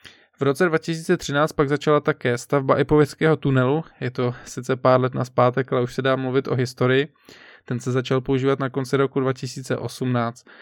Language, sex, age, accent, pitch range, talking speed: Czech, male, 20-39, native, 125-140 Hz, 175 wpm